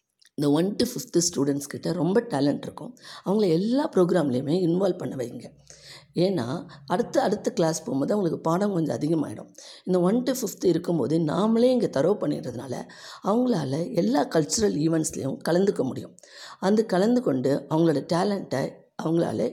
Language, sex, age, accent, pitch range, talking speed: Tamil, female, 60-79, native, 160-215 Hz, 135 wpm